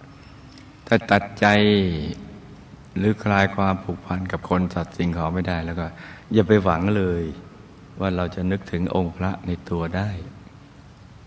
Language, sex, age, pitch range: Thai, male, 60-79, 85-100 Hz